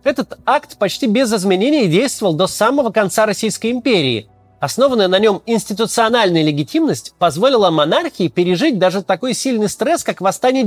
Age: 30-49